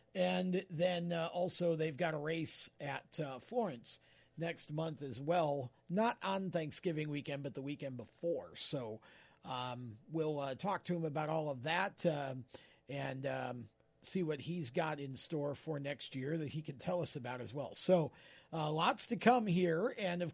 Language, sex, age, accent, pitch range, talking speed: English, male, 50-69, American, 150-190 Hz, 185 wpm